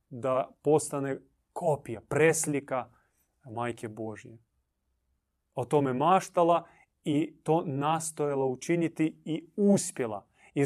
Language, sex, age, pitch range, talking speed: Croatian, male, 30-49, 115-170 Hz, 90 wpm